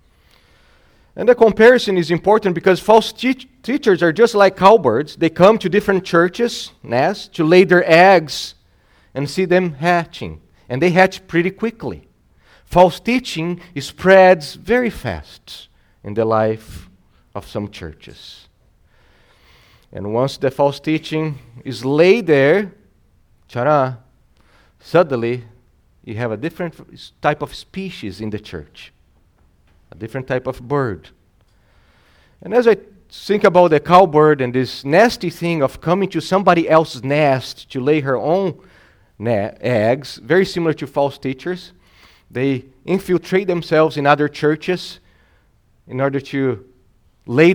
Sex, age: male, 40-59